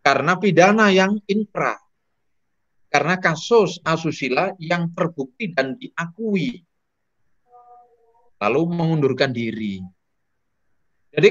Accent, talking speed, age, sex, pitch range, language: native, 80 wpm, 30-49, male, 145-195 Hz, Indonesian